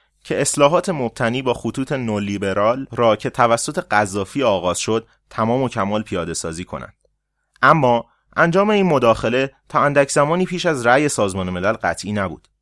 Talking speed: 150 wpm